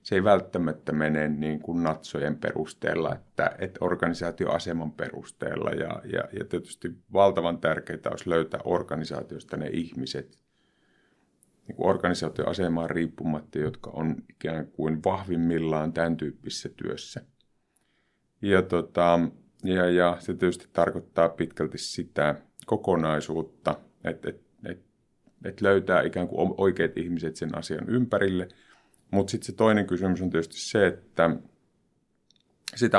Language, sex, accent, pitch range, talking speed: Finnish, male, native, 80-95 Hz, 120 wpm